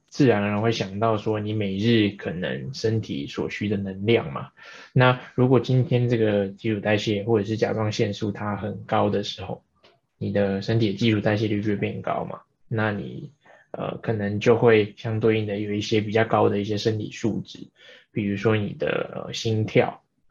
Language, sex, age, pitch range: Chinese, male, 10-29, 105-115 Hz